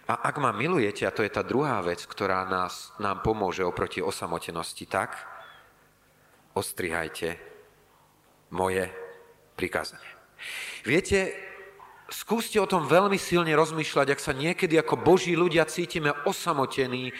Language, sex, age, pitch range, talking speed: Slovak, male, 40-59, 120-180 Hz, 120 wpm